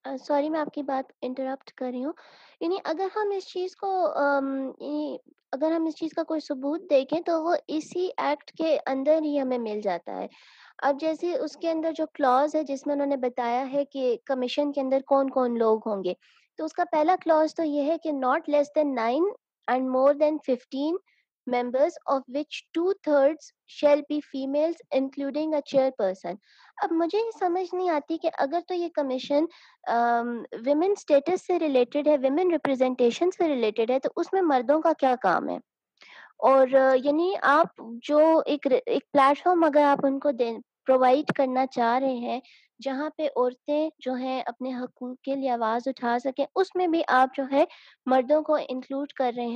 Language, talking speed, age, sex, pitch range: Urdu, 135 wpm, 20-39, female, 260-320 Hz